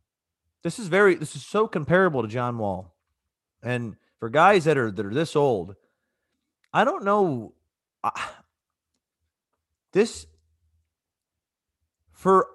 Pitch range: 95-135 Hz